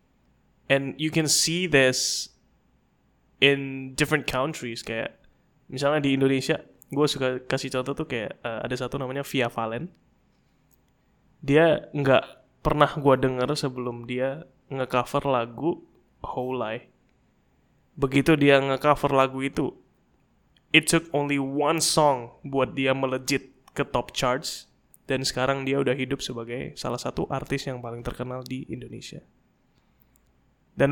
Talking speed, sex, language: 130 wpm, male, Indonesian